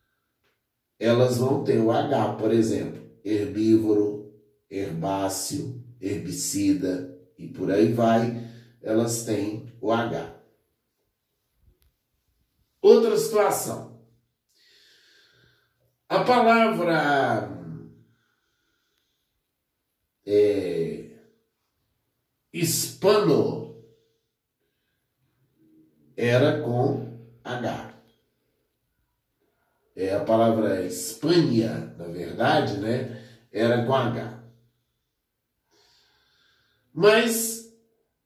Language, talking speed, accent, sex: Portuguese, 60 wpm, Brazilian, male